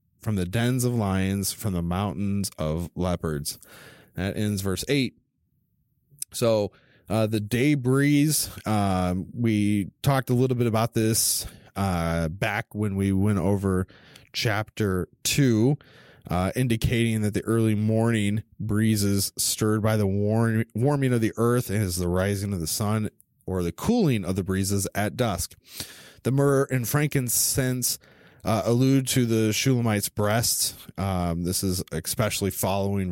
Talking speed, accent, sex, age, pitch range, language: 140 wpm, American, male, 20-39, 95-125 Hz, English